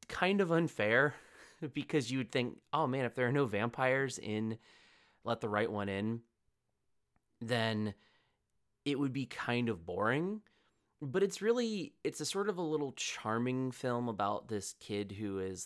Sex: male